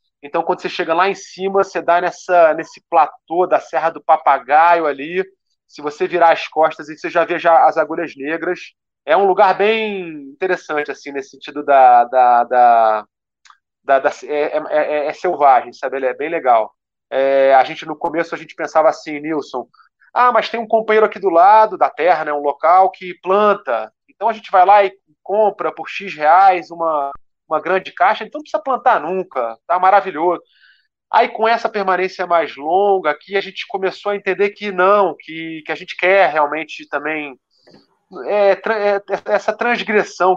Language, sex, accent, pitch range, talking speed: Portuguese, male, Brazilian, 155-195 Hz, 180 wpm